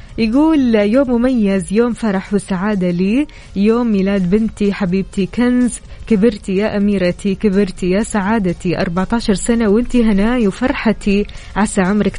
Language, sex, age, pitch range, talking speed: Arabic, female, 20-39, 185-230 Hz, 125 wpm